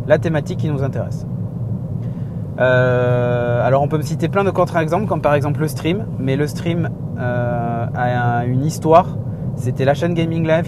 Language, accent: French, French